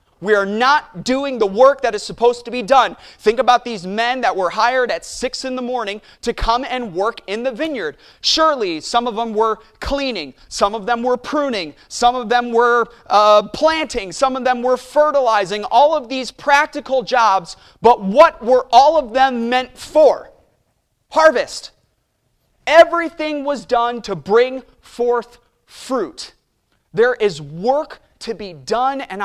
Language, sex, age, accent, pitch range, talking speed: English, male, 30-49, American, 210-265 Hz, 165 wpm